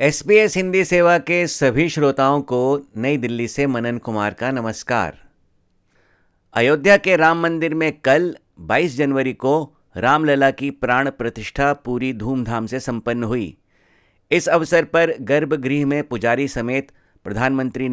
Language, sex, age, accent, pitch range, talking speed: Hindi, male, 50-69, native, 115-145 Hz, 135 wpm